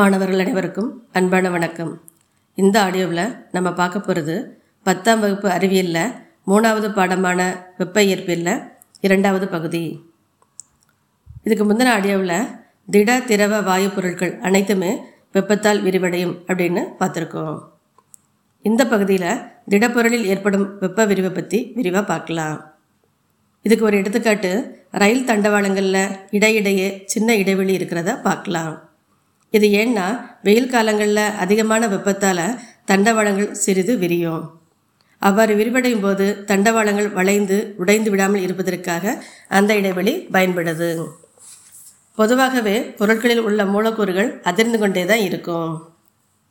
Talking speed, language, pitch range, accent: 100 wpm, Tamil, 185-220 Hz, native